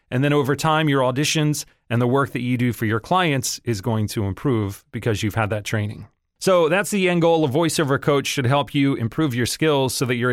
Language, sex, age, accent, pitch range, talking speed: English, male, 30-49, American, 115-155 Hz, 240 wpm